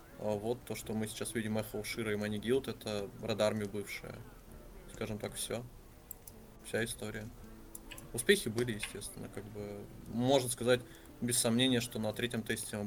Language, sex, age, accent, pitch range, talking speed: Russian, male, 20-39, native, 105-120 Hz, 150 wpm